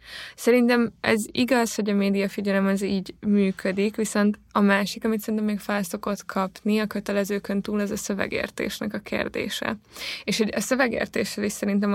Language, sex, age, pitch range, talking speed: Hungarian, female, 20-39, 190-225 Hz, 155 wpm